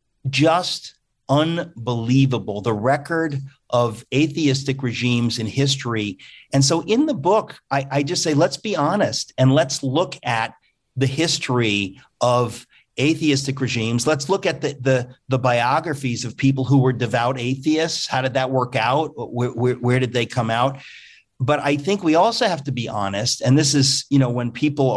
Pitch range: 120-150 Hz